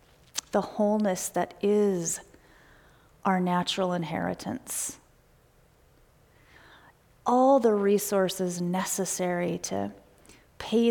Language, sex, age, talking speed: English, female, 30-49, 70 wpm